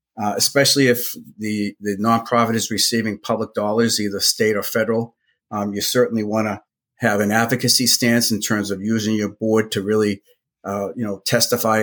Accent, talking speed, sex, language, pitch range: American, 180 wpm, male, English, 100-115 Hz